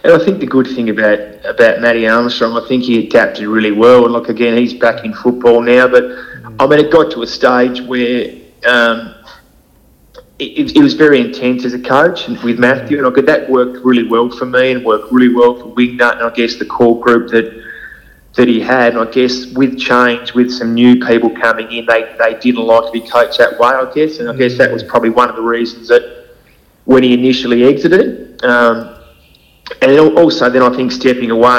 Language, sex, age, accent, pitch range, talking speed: English, male, 30-49, Australian, 115-130 Hz, 220 wpm